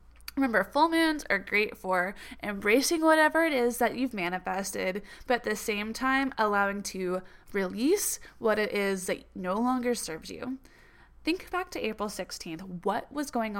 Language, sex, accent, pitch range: English, female, American, 195-270 Hz